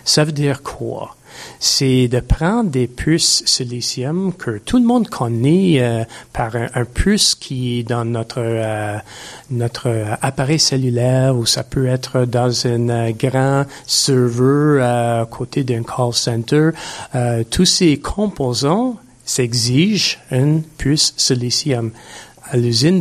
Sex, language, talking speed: male, French, 140 wpm